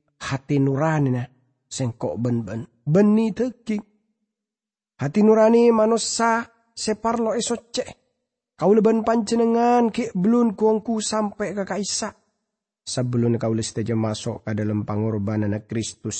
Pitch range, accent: 120-185 Hz, Indonesian